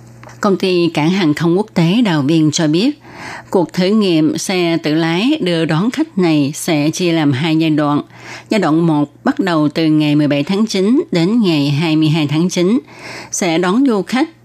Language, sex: Vietnamese, female